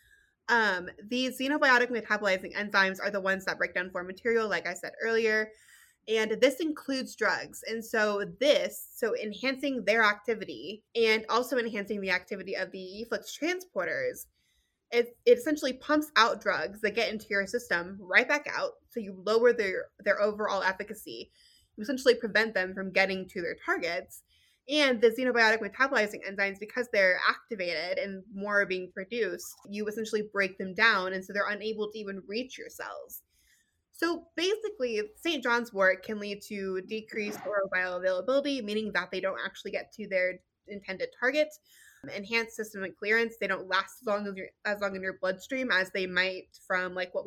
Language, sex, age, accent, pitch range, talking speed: English, female, 20-39, American, 195-245 Hz, 175 wpm